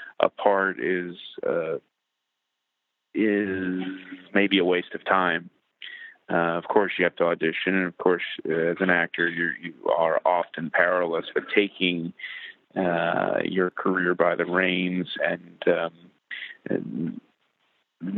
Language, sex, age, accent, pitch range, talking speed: English, male, 40-59, American, 90-110 Hz, 130 wpm